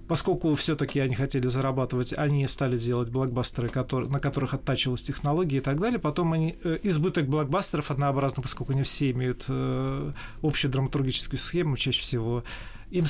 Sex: male